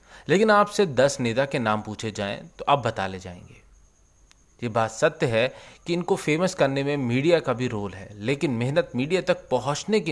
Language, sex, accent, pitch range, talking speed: Hindi, male, native, 110-170 Hz, 195 wpm